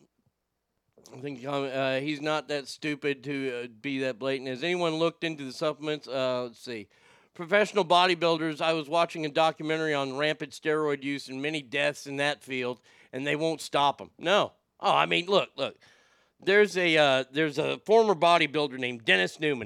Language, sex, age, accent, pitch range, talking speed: English, male, 50-69, American, 130-165 Hz, 180 wpm